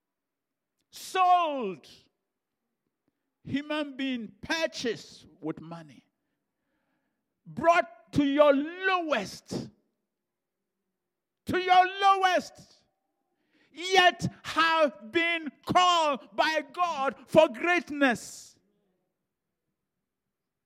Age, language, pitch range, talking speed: 50-69, English, 265-330 Hz, 60 wpm